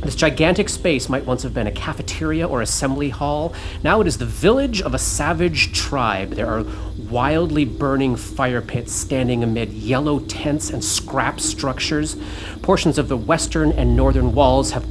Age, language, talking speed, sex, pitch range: 30-49, English, 170 wpm, male, 100-140 Hz